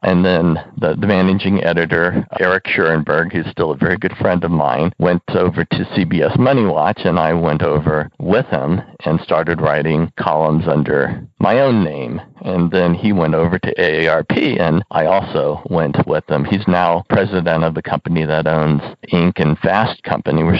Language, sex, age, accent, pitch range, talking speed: English, male, 50-69, American, 80-100 Hz, 180 wpm